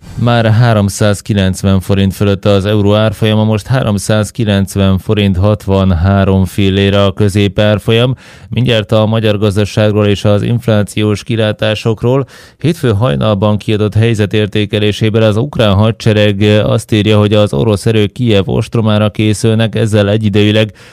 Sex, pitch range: male, 100-110 Hz